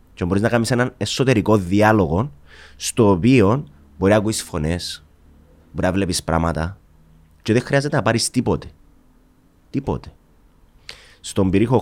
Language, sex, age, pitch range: Greek, male, 30-49, 80-110 Hz